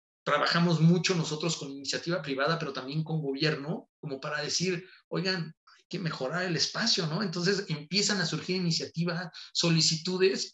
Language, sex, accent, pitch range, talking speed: Spanish, male, Mexican, 135-175 Hz, 150 wpm